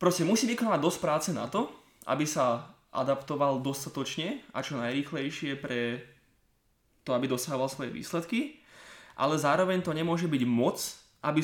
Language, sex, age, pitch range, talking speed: Slovak, male, 20-39, 120-170 Hz, 140 wpm